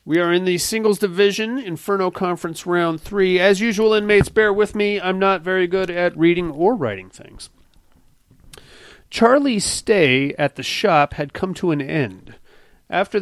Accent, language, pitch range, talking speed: American, English, 140-190 Hz, 165 wpm